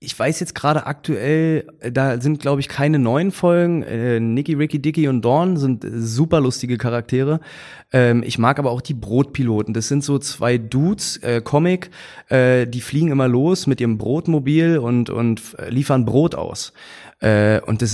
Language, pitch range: German, 115-150 Hz